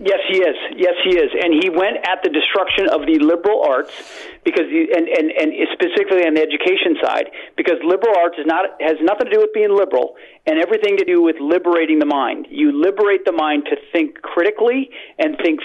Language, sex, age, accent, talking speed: English, male, 50-69, American, 210 wpm